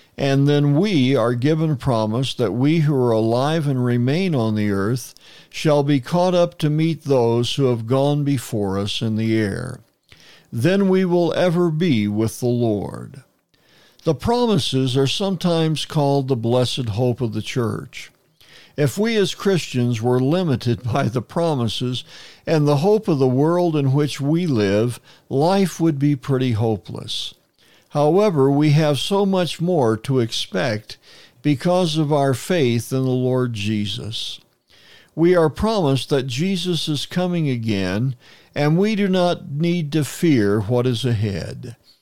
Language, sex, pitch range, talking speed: English, male, 120-160 Hz, 155 wpm